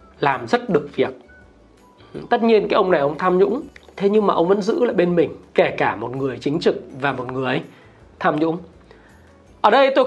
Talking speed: 210 wpm